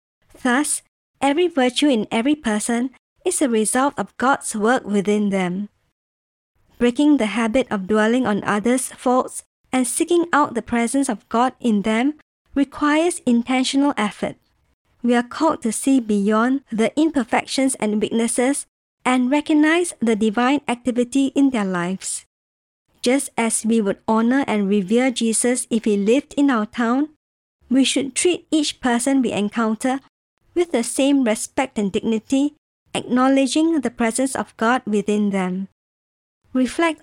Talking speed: 140 wpm